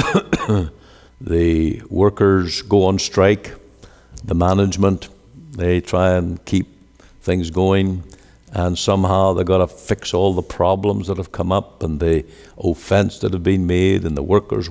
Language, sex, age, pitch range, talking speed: English, male, 60-79, 85-105 Hz, 145 wpm